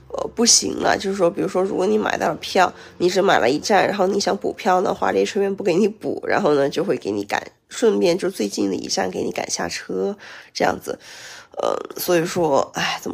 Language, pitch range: Chinese, 185-250 Hz